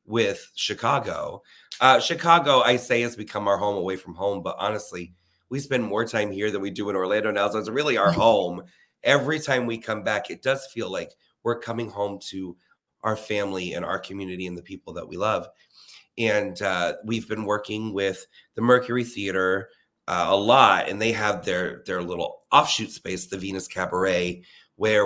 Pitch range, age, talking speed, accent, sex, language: 95-120 Hz, 30-49, 190 wpm, American, male, English